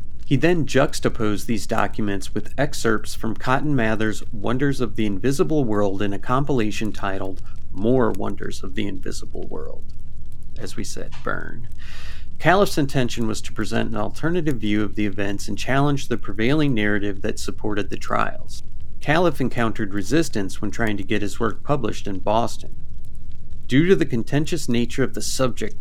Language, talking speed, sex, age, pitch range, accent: English, 160 wpm, male, 40-59, 100-135 Hz, American